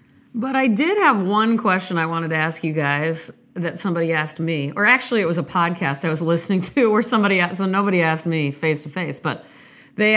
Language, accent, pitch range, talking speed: English, American, 165-210 Hz, 210 wpm